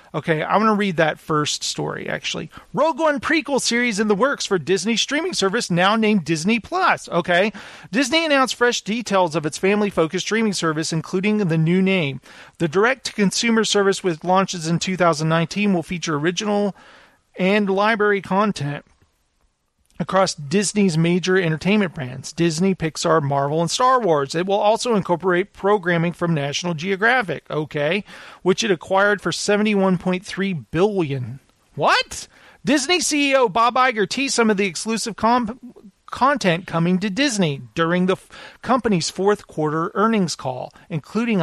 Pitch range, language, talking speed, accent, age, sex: 165-220 Hz, English, 145 wpm, American, 40-59, male